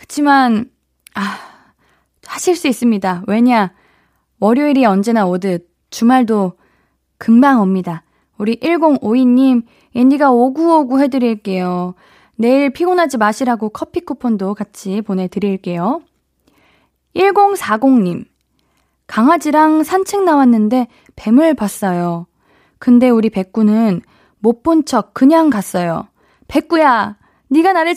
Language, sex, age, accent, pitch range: Korean, female, 20-39, native, 210-295 Hz